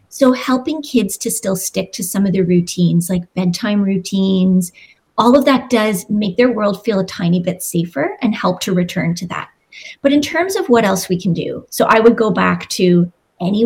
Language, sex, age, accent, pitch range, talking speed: English, female, 30-49, American, 190-245 Hz, 210 wpm